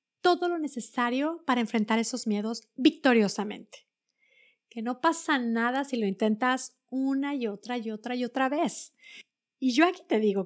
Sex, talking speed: female, 160 wpm